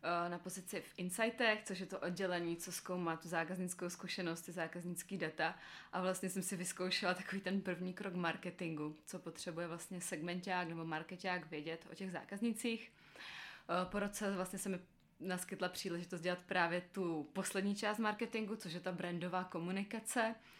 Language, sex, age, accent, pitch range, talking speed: Czech, female, 20-39, native, 170-195 Hz, 155 wpm